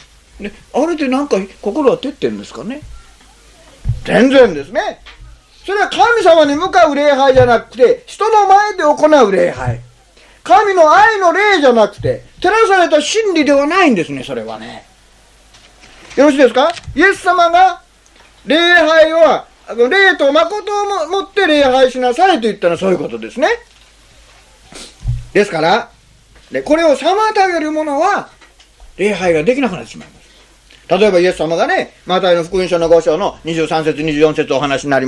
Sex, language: male, Japanese